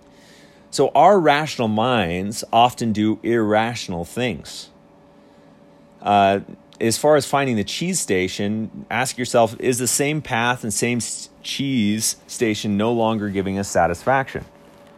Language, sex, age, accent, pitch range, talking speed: English, male, 30-49, American, 100-125 Hz, 125 wpm